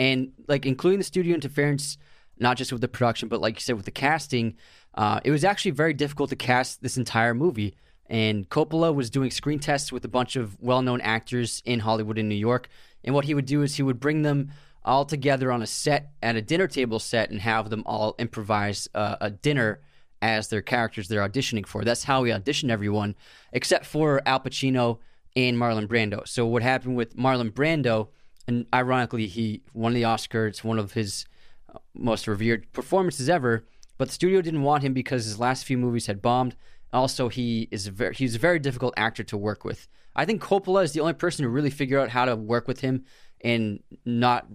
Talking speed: 210 wpm